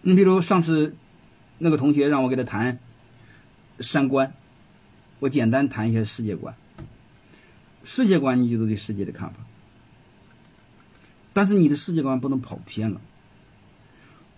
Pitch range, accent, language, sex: 115-165 Hz, native, Chinese, male